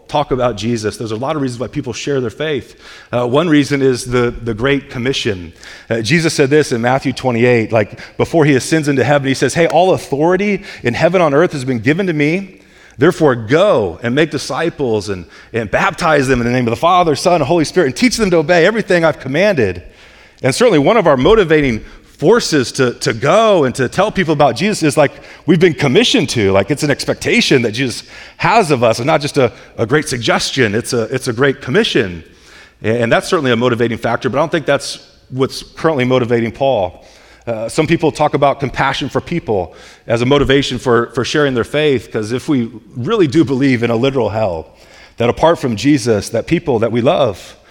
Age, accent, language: 30-49, American, English